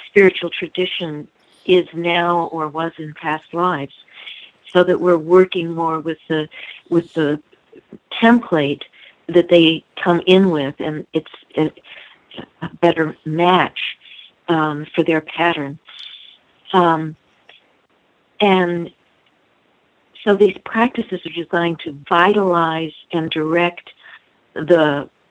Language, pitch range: English, 155-175 Hz